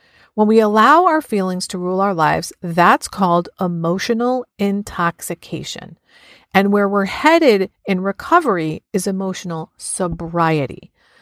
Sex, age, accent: female, 40-59, American